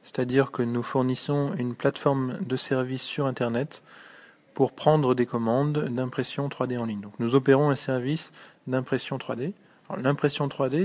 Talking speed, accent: 155 wpm, French